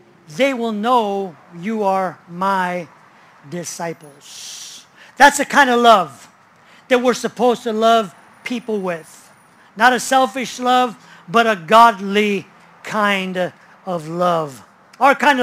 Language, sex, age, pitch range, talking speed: English, male, 50-69, 195-265 Hz, 120 wpm